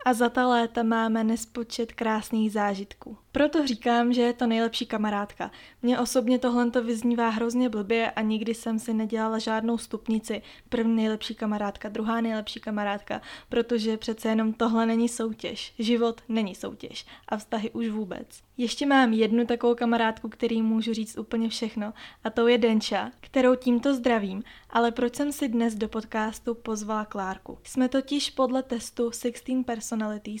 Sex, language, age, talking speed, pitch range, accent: female, Czech, 20-39, 160 wpm, 220-240 Hz, native